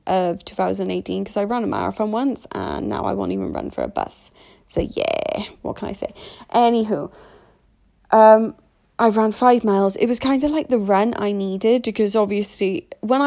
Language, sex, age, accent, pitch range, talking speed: English, female, 30-49, British, 195-230 Hz, 185 wpm